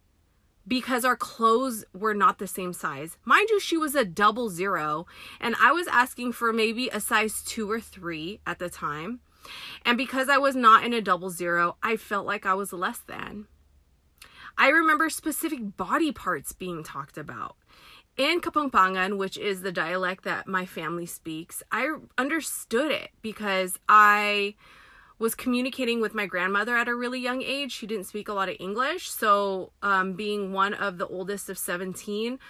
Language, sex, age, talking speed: English, female, 20-39, 175 wpm